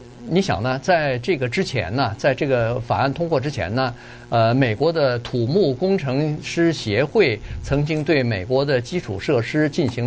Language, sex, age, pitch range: Chinese, male, 50-69, 120-160 Hz